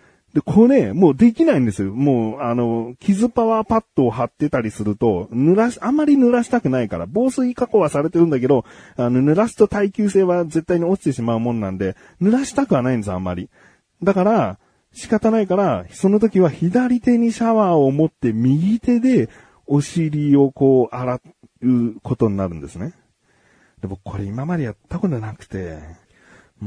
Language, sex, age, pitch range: Japanese, male, 40-59, 105-175 Hz